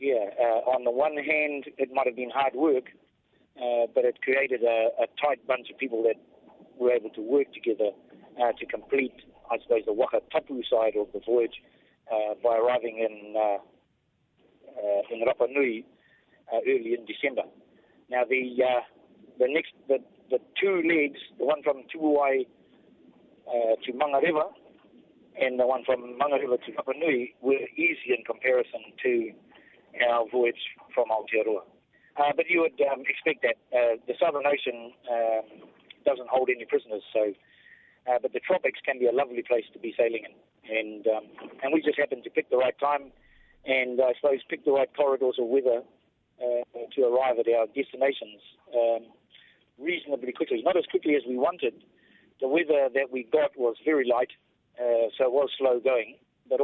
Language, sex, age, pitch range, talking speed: English, male, 40-59, 120-165 Hz, 175 wpm